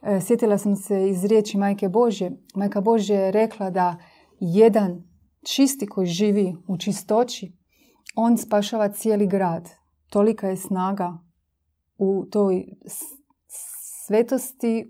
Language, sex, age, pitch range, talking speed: Croatian, female, 30-49, 185-220 Hz, 115 wpm